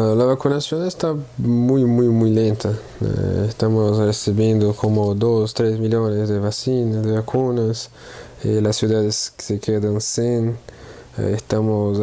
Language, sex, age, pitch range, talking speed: Spanish, male, 20-39, 110-125 Hz, 115 wpm